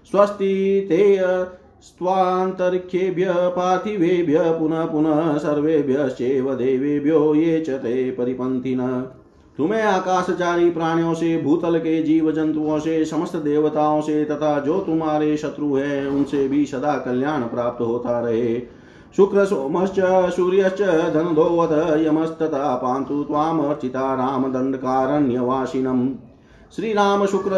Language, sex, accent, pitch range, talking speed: Hindi, male, native, 135-175 Hz, 100 wpm